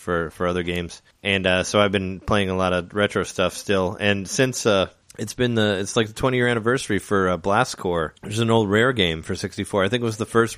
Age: 30-49